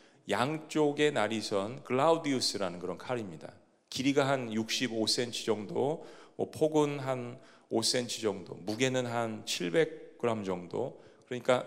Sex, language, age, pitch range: male, Korean, 40-59, 110-145 Hz